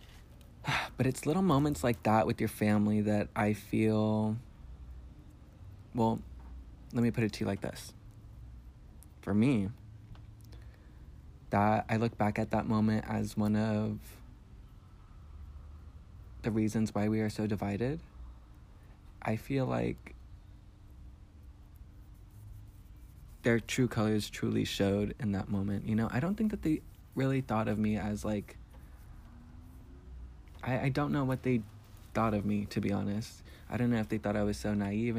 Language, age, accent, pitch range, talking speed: English, 20-39, American, 100-115 Hz, 145 wpm